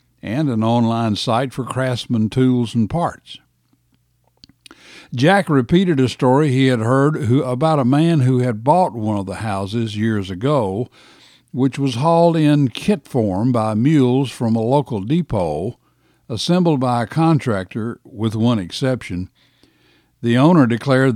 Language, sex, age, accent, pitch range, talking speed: English, male, 60-79, American, 105-140 Hz, 145 wpm